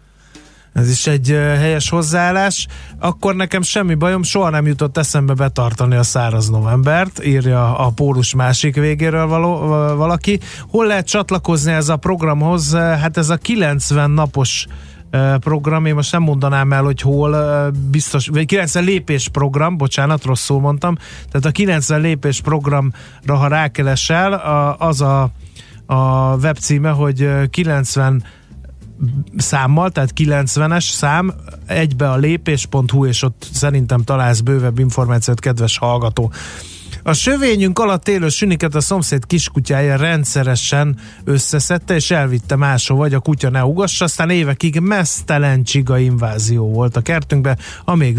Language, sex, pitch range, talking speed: Hungarian, male, 130-160 Hz, 130 wpm